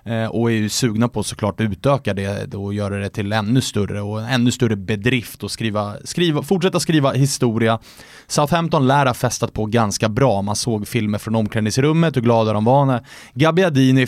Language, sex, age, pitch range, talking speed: English, male, 30-49, 110-145 Hz, 180 wpm